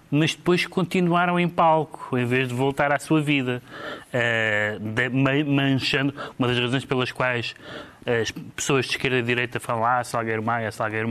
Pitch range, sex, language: 115-145 Hz, male, Portuguese